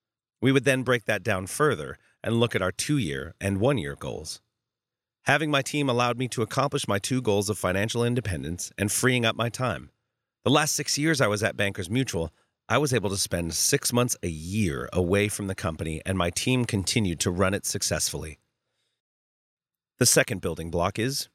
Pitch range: 95-130 Hz